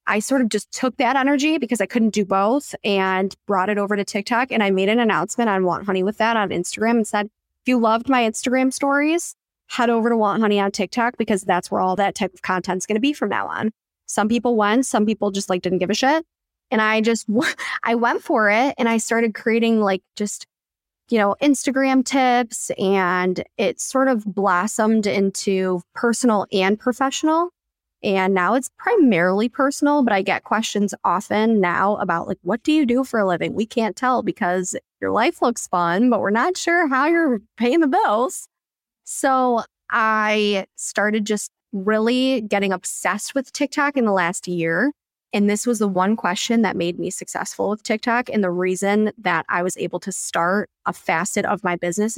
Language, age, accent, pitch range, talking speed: English, 10-29, American, 195-245 Hz, 200 wpm